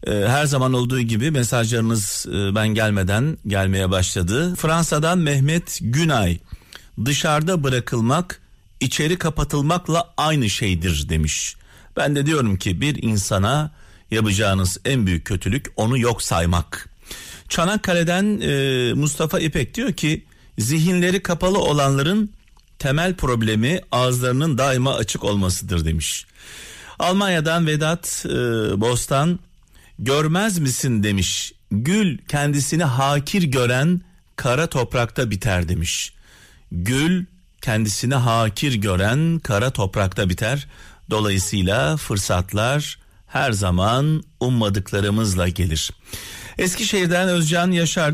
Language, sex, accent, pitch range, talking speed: Turkish, male, native, 100-160 Hz, 95 wpm